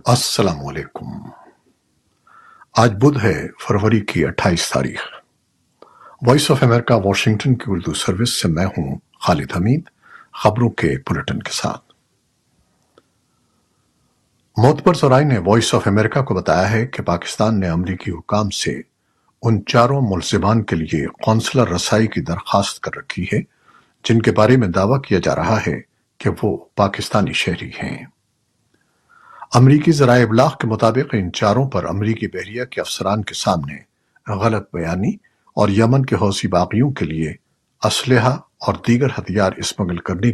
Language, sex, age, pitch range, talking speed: Urdu, male, 60-79, 100-130 Hz, 145 wpm